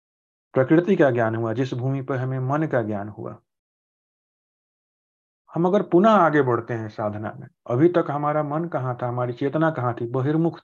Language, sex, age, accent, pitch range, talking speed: Hindi, male, 40-59, native, 120-155 Hz, 175 wpm